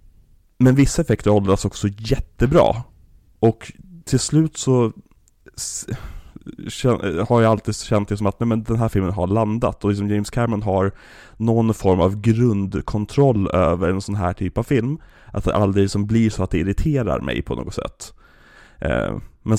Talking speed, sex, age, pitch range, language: 170 wpm, male, 30-49, 95-115 Hz, Swedish